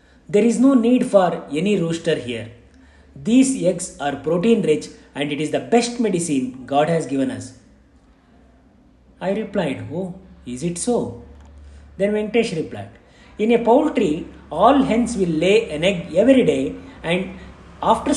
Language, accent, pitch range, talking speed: Kannada, native, 135-215 Hz, 150 wpm